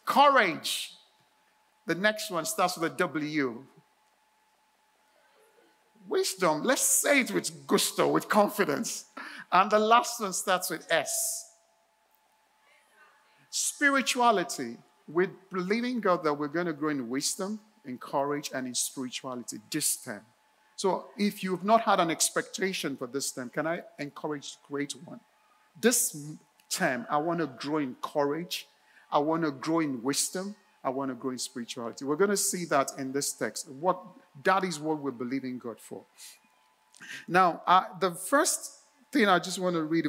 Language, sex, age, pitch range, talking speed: English, male, 50-69, 145-205 Hz, 155 wpm